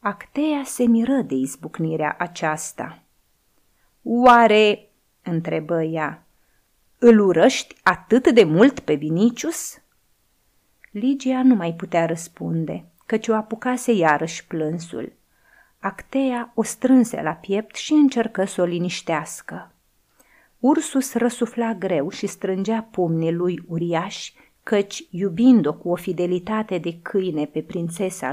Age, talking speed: 30-49, 110 wpm